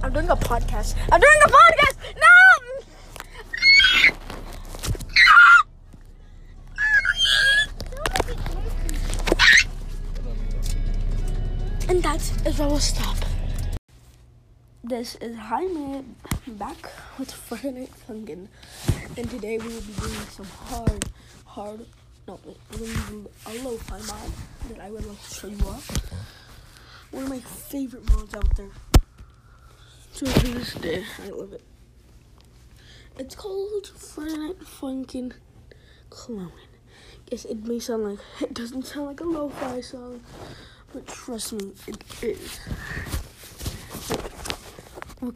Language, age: English, 20-39